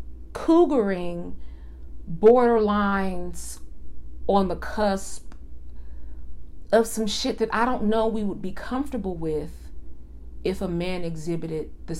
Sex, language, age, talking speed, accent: female, English, 40-59, 110 wpm, American